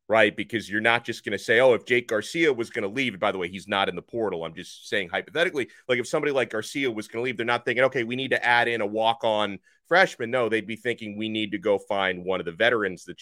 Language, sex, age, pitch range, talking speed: English, male, 30-49, 115-160 Hz, 290 wpm